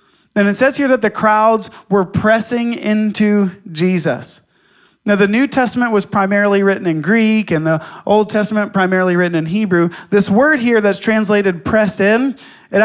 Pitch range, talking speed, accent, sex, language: 185-220 Hz, 170 wpm, American, male, English